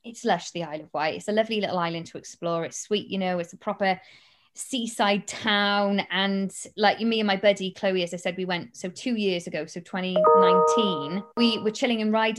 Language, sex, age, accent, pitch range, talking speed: English, female, 20-39, British, 180-205 Hz, 220 wpm